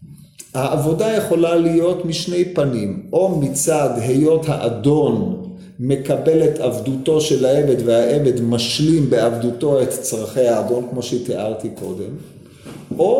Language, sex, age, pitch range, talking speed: Hebrew, male, 50-69, 125-185 Hz, 110 wpm